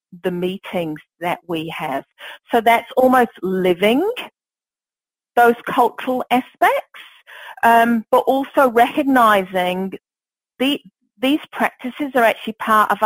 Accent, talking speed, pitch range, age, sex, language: British, 100 wpm, 175-230 Hz, 40-59, female, English